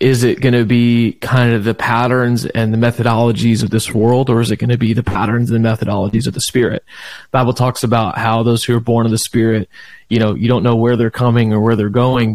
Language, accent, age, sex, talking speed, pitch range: English, American, 30-49, male, 255 wpm, 110-125 Hz